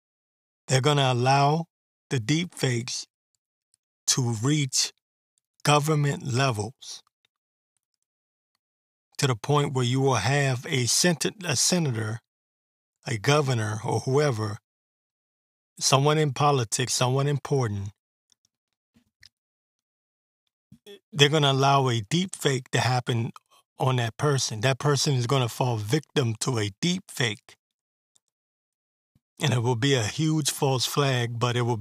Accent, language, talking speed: American, English, 115 wpm